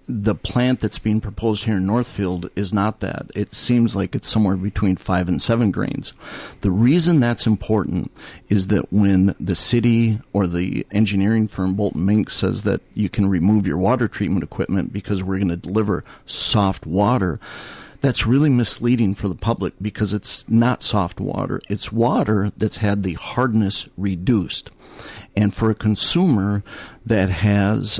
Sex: male